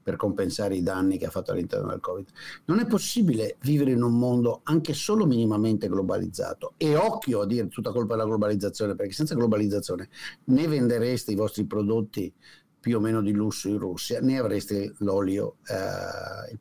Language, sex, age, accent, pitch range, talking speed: Italian, male, 50-69, native, 110-180 Hz, 175 wpm